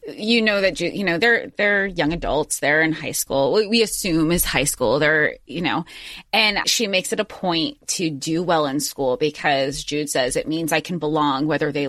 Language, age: English, 30-49